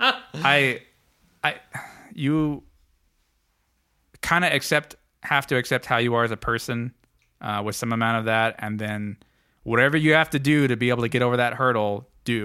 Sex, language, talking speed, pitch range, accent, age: male, English, 180 wpm, 95-115 Hz, American, 20-39